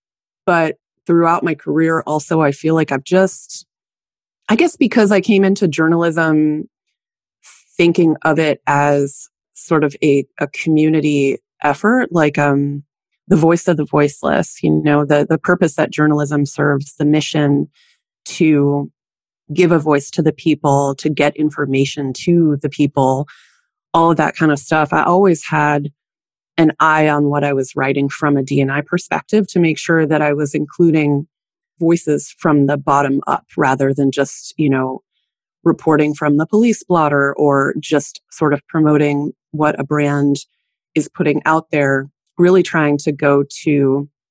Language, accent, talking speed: English, American, 155 wpm